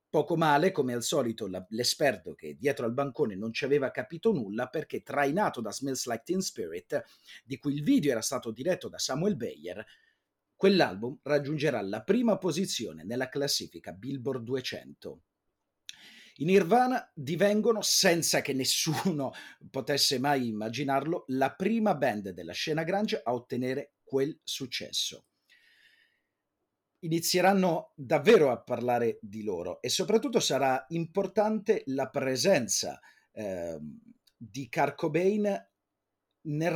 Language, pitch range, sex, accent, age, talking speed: Italian, 120-185 Hz, male, native, 40-59, 125 wpm